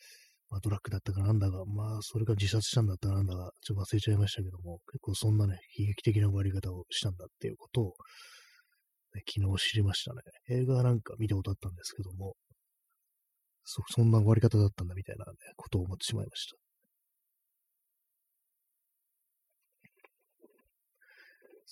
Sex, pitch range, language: male, 100-125 Hz, Japanese